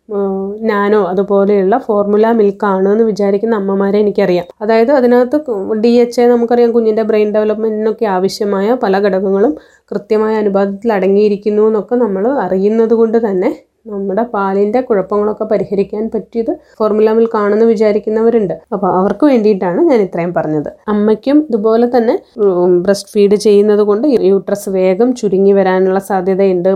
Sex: female